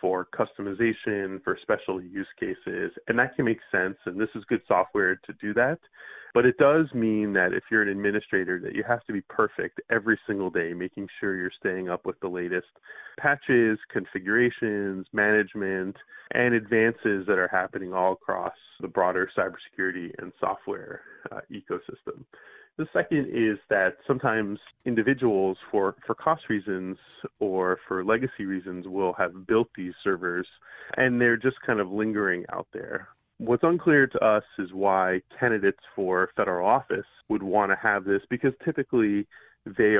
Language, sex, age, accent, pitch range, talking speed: English, male, 20-39, American, 95-130 Hz, 160 wpm